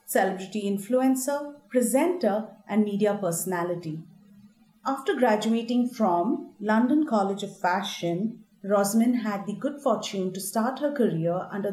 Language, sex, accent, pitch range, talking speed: English, female, Indian, 195-245 Hz, 120 wpm